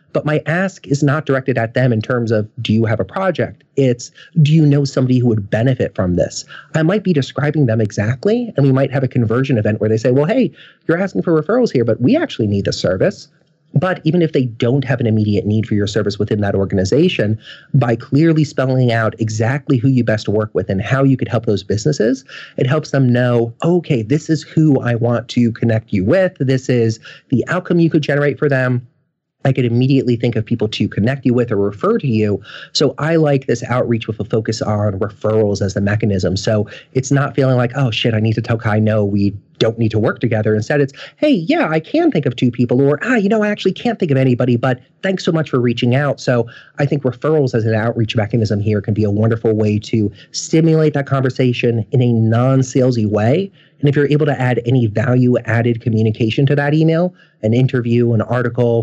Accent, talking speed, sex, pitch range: American, 225 wpm, male, 110-150 Hz